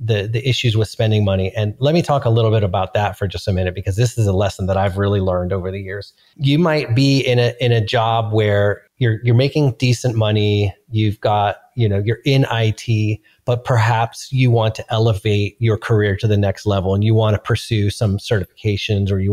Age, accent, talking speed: 30-49, American, 225 wpm